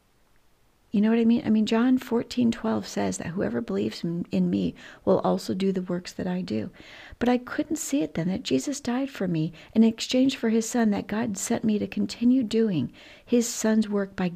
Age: 50-69